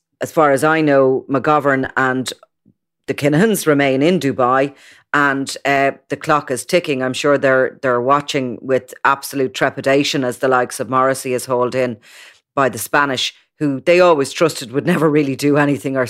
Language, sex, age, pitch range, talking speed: English, female, 30-49, 130-145 Hz, 175 wpm